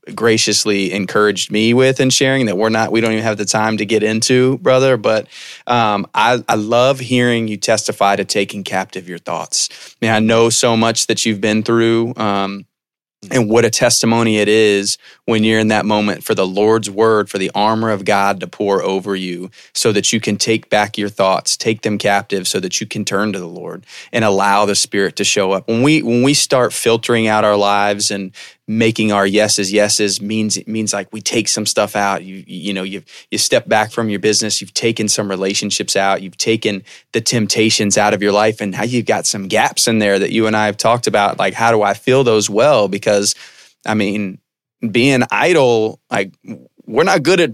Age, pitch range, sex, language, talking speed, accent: 20-39, 100-115 Hz, male, English, 215 wpm, American